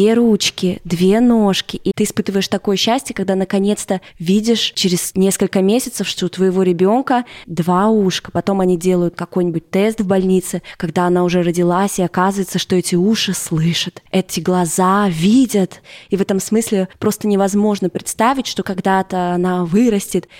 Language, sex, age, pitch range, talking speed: Russian, female, 20-39, 185-230 Hz, 155 wpm